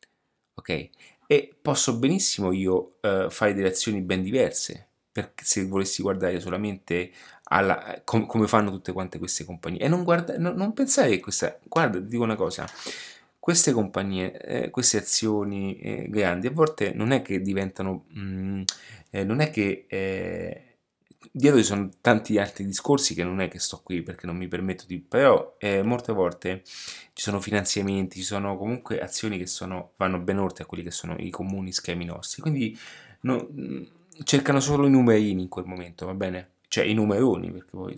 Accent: native